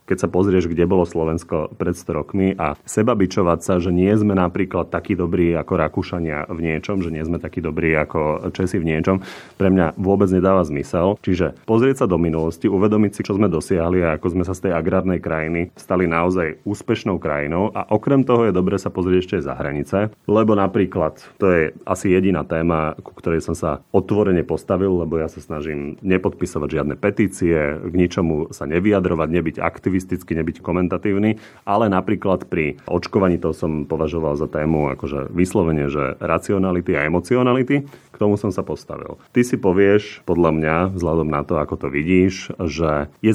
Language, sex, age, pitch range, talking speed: Slovak, male, 30-49, 80-100 Hz, 180 wpm